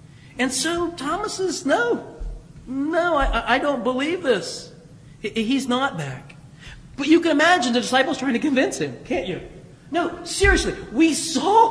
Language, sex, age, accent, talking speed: English, male, 30-49, American, 155 wpm